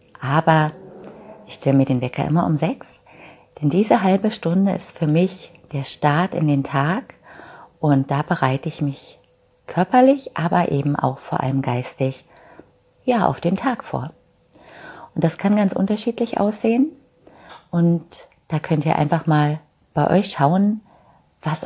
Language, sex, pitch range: English, female, 135-175 Hz